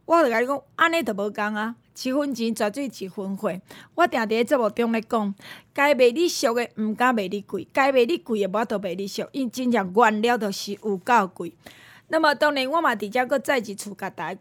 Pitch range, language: 205-275 Hz, Chinese